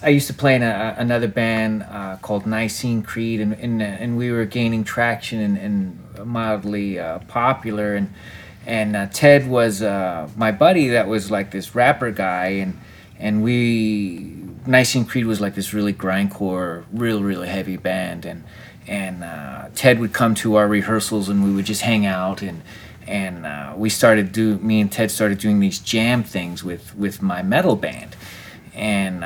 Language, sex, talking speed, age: English, male, 180 wpm, 30-49